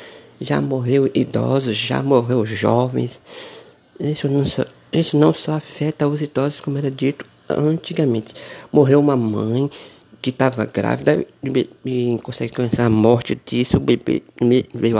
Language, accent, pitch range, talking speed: Portuguese, Brazilian, 115-145 Hz, 130 wpm